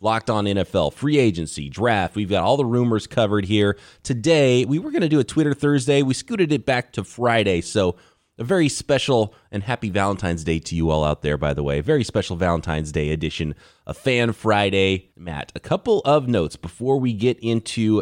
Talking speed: 205 wpm